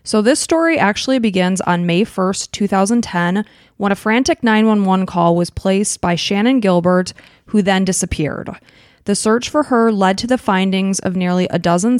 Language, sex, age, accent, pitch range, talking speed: English, female, 20-39, American, 185-220 Hz, 170 wpm